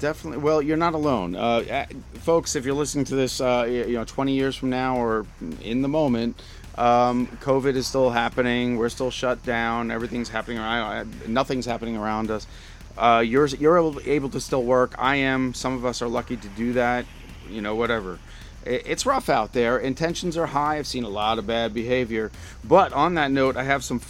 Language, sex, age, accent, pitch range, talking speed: English, male, 40-59, American, 115-135 Hz, 205 wpm